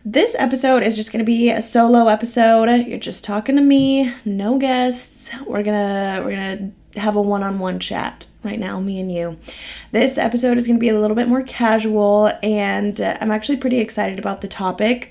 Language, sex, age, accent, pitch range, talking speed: English, female, 20-39, American, 205-240 Hz, 185 wpm